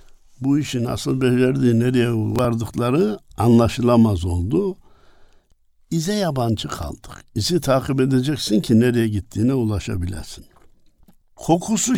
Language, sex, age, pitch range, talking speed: Turkish, male, 60-79, 90-135 Hz, 95 wpm